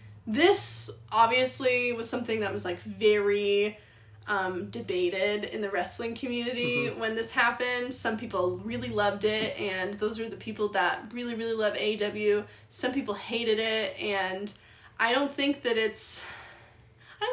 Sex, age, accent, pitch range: female, 10-29, American, 205-255 Hz